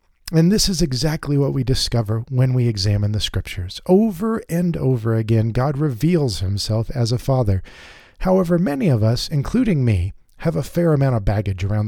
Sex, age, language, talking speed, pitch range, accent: male, 40-59, English, 175 wpm, 105-150 Hz, American